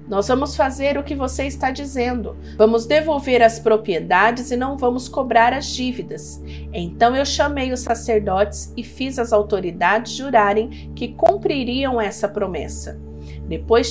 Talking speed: 140 wpm